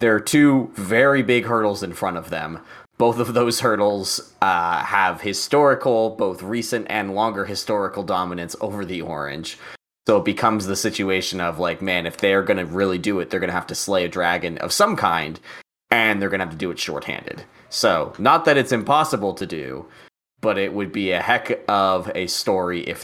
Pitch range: 95-115 Hz